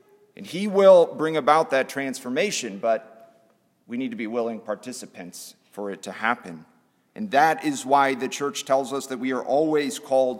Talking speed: 180 wpm